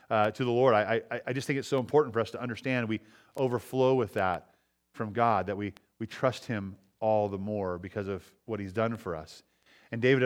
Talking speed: 230 wpm